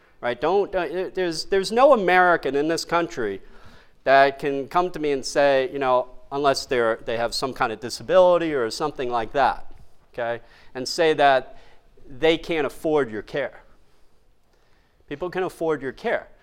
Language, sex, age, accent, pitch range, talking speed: English, male, 40-59, American, 130-165 Hz, 165 wpm